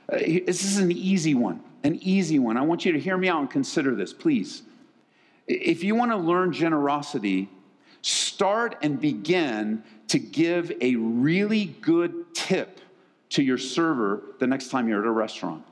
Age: 50-69